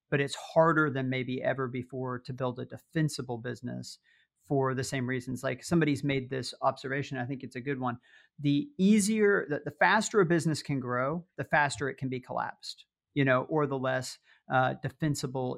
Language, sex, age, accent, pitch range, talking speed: English, male, 40-59, American, 130-150 Hz, 190 wpm